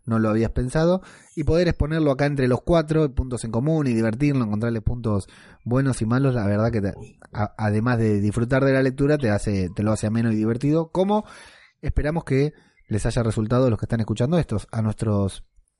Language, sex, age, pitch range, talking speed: Spanish, male, 20-39, 105-140 Hz, 205 wpm